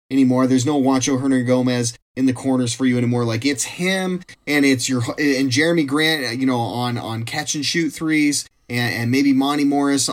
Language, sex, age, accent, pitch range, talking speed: English, male, 30-49, American, 120-140 Hz, 190 wpm